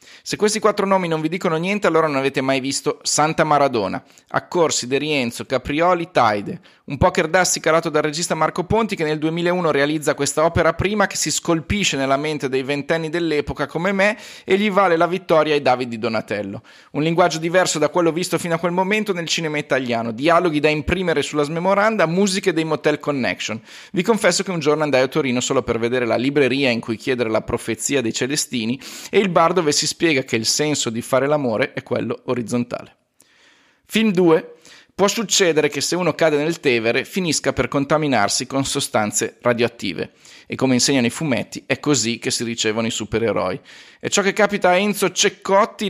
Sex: male